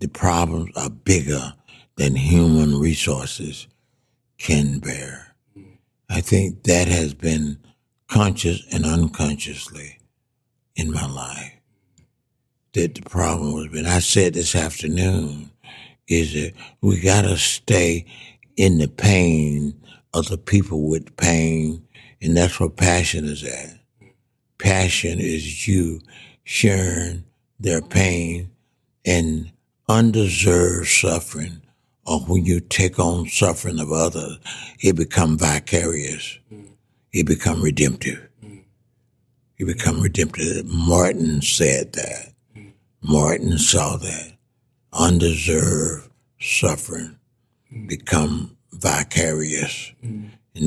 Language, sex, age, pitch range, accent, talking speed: English, male, 60-79, 80-100 Hz, American, 100 wpm